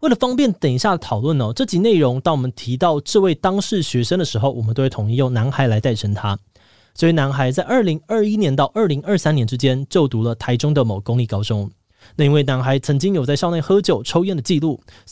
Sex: male